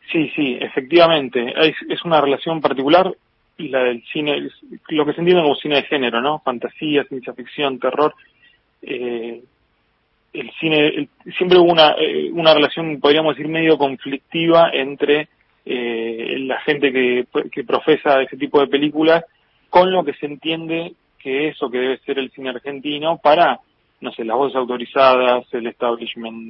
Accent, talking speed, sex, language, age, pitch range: Argentinian, 165 wpm, male, Spanish, 30-49, 125-160 Hz